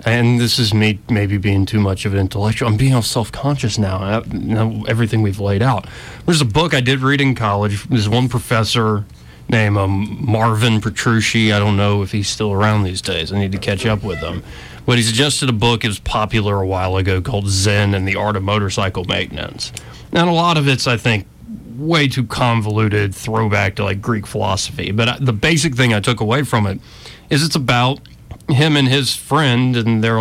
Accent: American